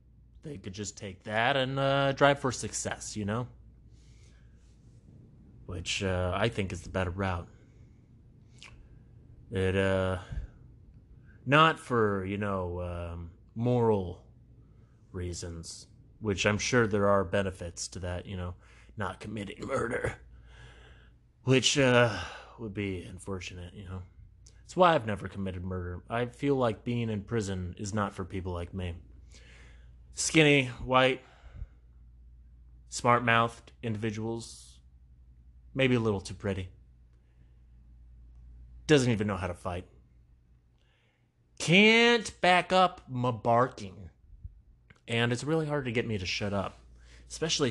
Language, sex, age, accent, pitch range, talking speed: English, male, 30-49, American, 90-125 Hz, 125 wpm